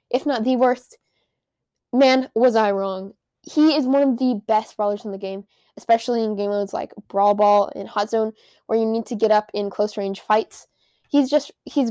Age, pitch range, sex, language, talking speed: 10-29, 210-260 Hz, female, English, 195 wpm